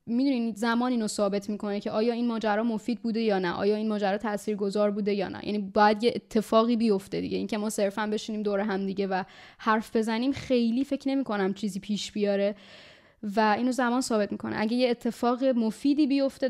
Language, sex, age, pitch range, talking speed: Persian, female, 10-29, 205-235 Hz, 205 wpm